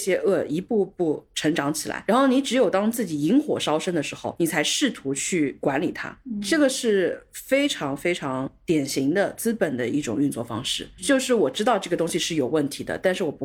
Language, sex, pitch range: Chinese, female, 145-220 Hz